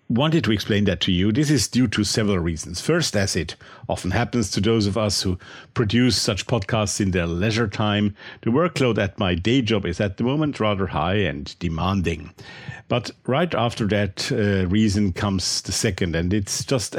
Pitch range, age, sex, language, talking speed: 95-110 Hz, 50-69, male, English, 195 wpm